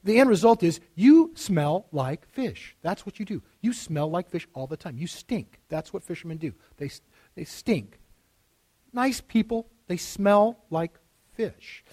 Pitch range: 155-230 Hz